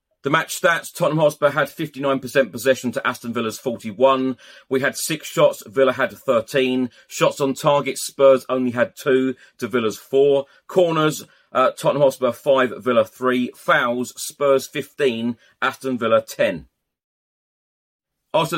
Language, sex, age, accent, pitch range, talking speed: English, male, 40-59, British, 125-145 Hz, 140 wpm